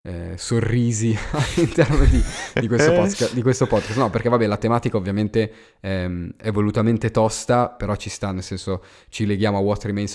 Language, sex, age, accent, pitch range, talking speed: Italian, male, 20-39, native, 95-115 Hz, 160 wpm